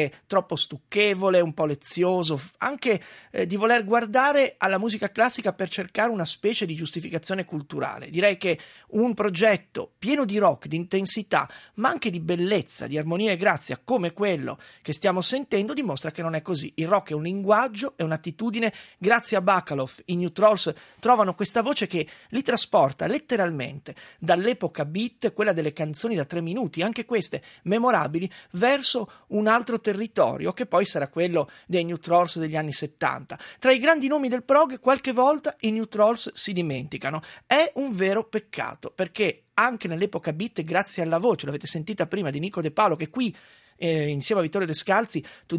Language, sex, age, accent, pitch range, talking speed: Italian, male, 30-49, native, 160-220 Hz, 170 wpm